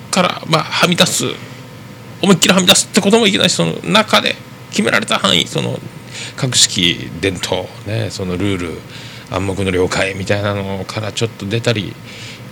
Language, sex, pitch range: Japanese, male, 100-130 Hz